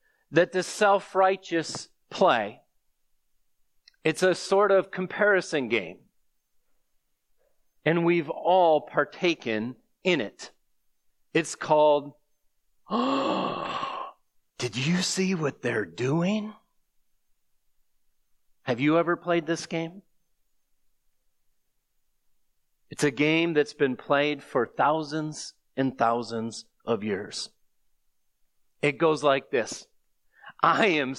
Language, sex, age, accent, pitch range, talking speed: English, male, 40-59, American, 140-190 Hz, 90 wpm